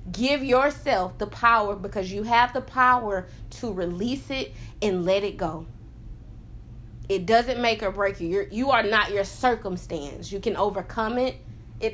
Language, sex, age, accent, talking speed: English, female, 30-49, American, 160 wpm